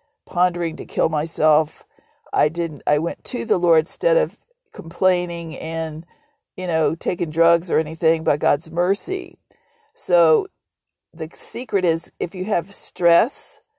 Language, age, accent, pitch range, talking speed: English, 50-69, American, 170-200 Hz, 140 wpm